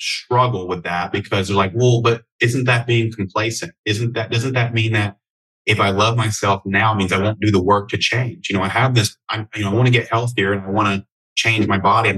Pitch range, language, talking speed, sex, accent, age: 100-115 Hz, English, 255 wpm, male, American, 30-49